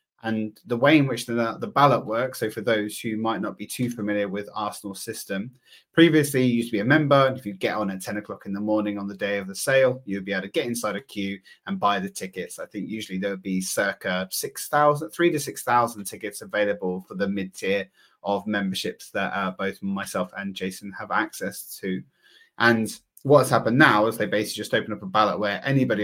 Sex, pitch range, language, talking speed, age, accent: male, 100-125 Hz, English, 230 wpm, 30-49, British